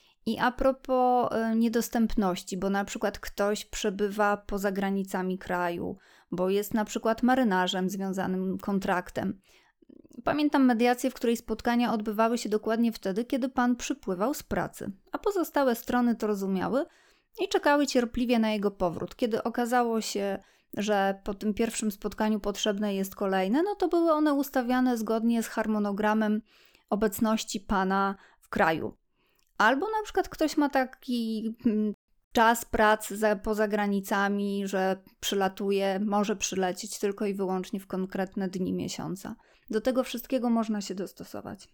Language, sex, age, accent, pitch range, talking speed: Polish, female, 20-39, native, 200-240 Hz, 135 wpm